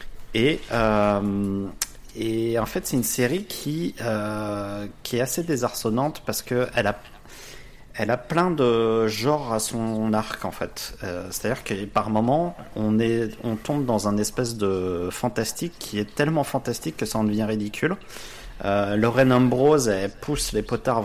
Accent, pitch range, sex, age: French, 105-130 Hz, male, 30-49